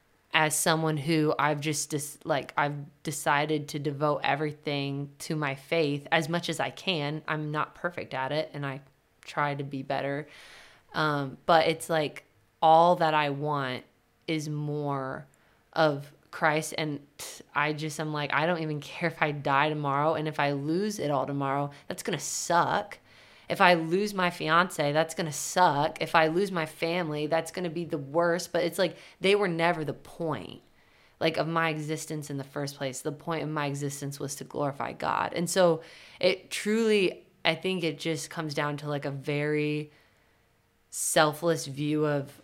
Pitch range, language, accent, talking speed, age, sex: 145-165 Hz, English, American, 180 wpm, 20-39, female